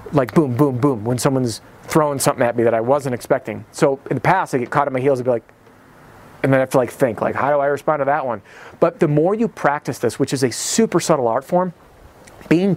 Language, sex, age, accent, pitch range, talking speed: English, male, 30-49, American, 130-165 Hz, 265 wpm